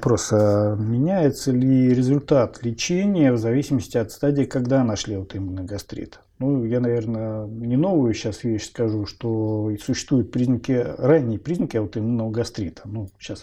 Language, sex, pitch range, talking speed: Russian, male, 110-135 Hz, 135 wpm